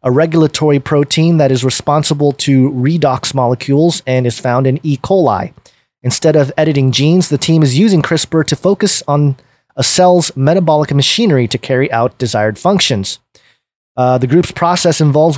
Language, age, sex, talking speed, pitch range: English, 30-49, male, 160 wpm, 130-165 Hz